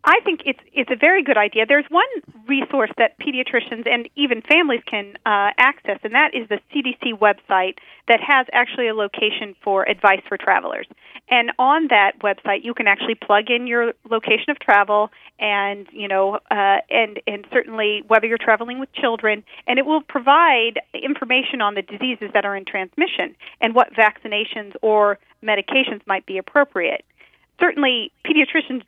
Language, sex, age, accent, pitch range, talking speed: English, female, 40-59, American, 205-255 Hz, 170 wpm